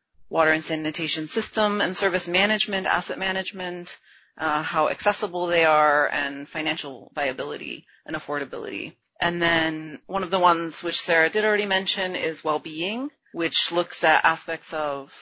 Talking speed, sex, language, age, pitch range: 145 wpm, female, English, 30-49, 155-190 Hz